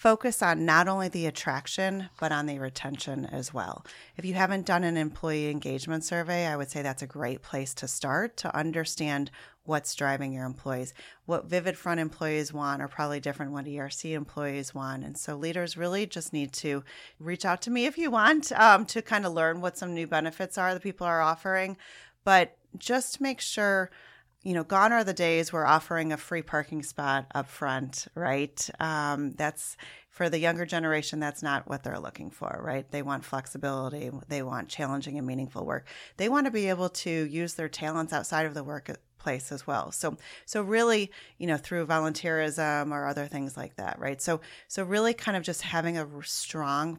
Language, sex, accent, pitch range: English, female, American, 140-180 Hz